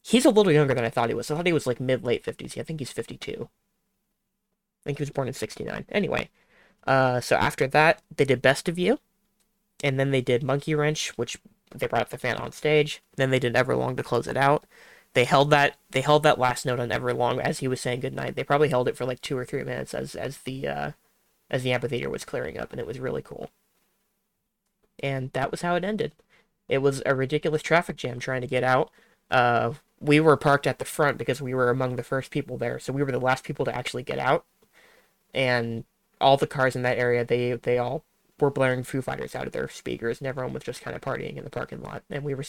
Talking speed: 245 wpm